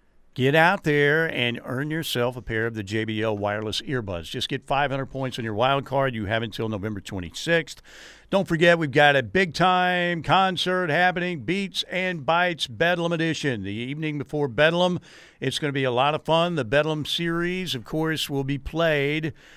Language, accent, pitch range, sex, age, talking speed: English, American, 125-160 Hz, male, 50-69, 180 wpm